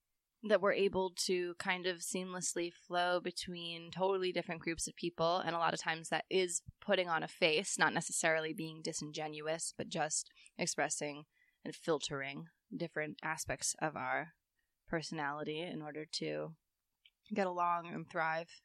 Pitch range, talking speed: 165-195 Hz, 150 wpm